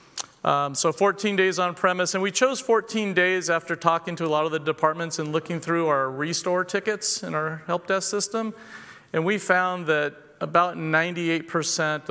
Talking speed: 180 wpm